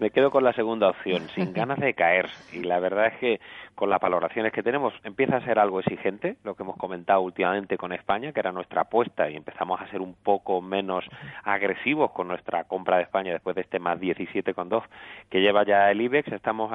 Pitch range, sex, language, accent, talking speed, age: 95-115 Hz, male, Spanish, Spanish, 215 wpm, 30-49